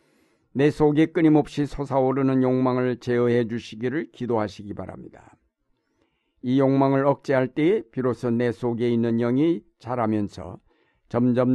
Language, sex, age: Korean, male, 60-79